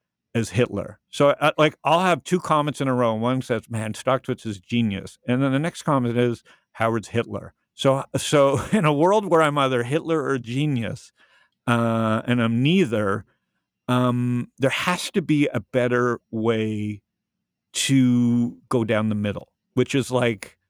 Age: 50-69